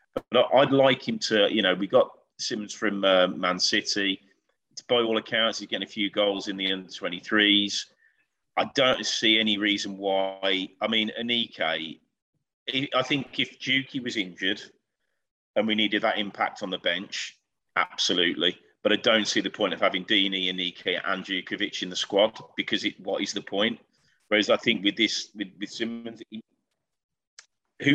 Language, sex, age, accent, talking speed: English, male, 40-59, British, 175 wpm